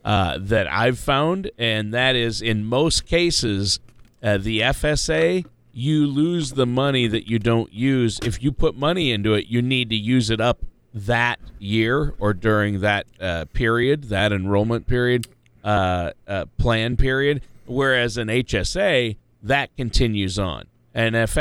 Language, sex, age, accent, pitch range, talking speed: English, male, 40-59, American, 100-130 Hz, 150 wpm